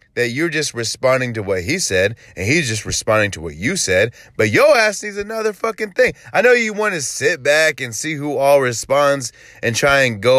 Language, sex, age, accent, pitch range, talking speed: English, male, 20-39, American, 135-205 Hz, 220 wpm